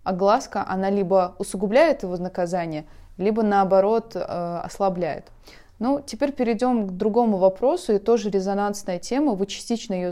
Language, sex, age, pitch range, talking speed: Russian, female, 20-39, 180-220 Hz, 135 wpm